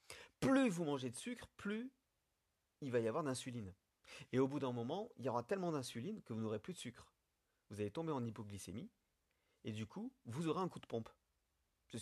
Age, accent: 50-69, French